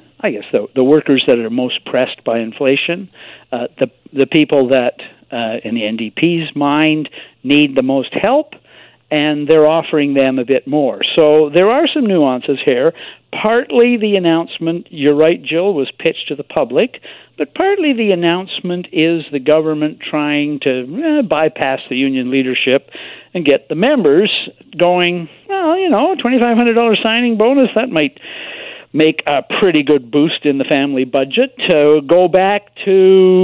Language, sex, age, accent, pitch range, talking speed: English, male, 60-79, American, 140-185 Hz, 160 wpm